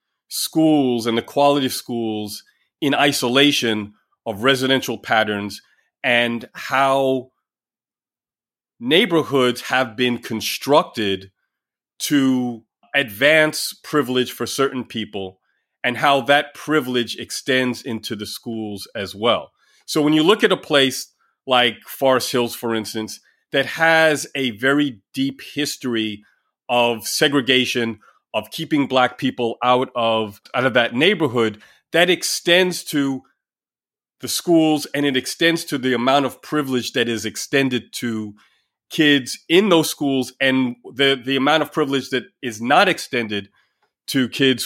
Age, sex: 30-49, male